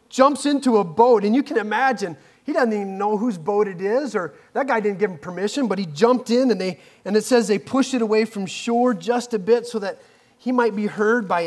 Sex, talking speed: male, 250 wpm